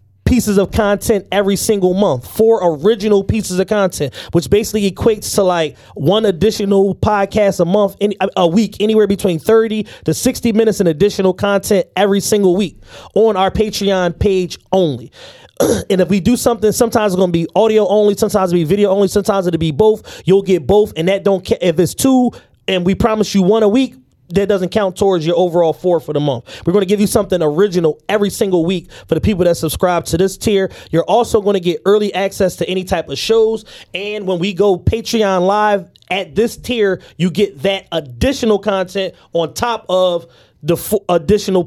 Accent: American